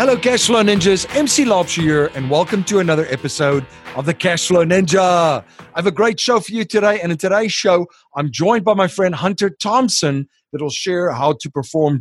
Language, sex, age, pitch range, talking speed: English, male, 40-59, 140-190 Hz, 200 wpm